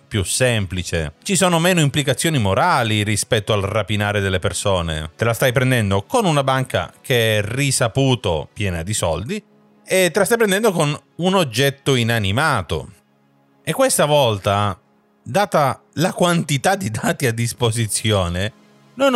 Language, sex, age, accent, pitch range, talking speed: Italian, male, 40-59, native, 95-140 Hz, 140 wpm